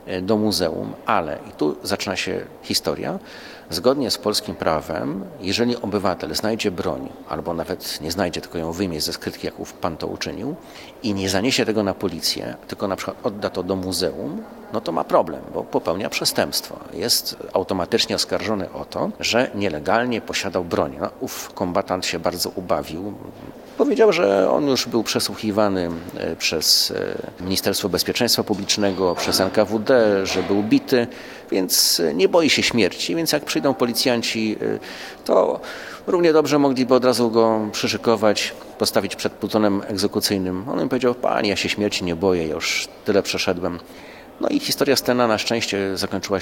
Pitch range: 90-115 Hz